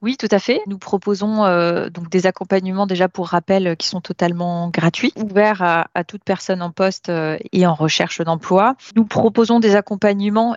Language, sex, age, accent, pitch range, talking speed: French, female, 20-39, French, 180-210 Hz, 195 wpm